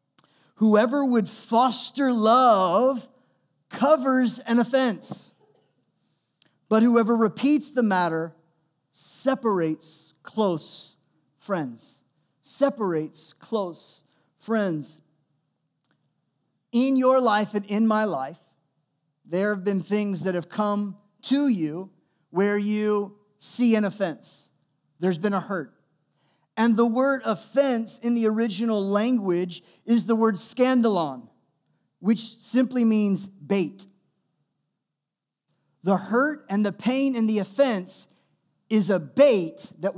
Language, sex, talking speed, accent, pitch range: English, male, 105 wpm, American, 175-235 Hz